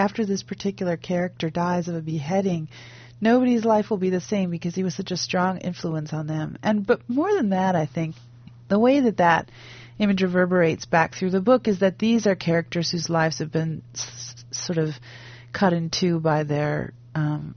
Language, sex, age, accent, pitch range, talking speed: English, female, 40-59, American, 150-185 Hz, 200 wpm